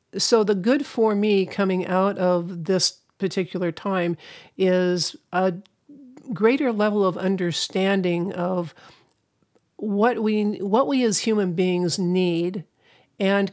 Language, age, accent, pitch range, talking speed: English, 50-69, American, 175-210 Hz, 120 wpm